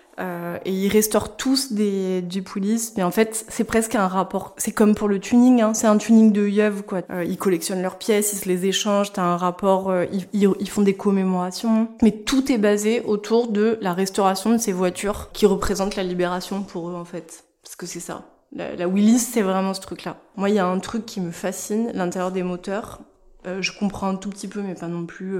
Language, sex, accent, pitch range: French, female, French, 185-225 Hz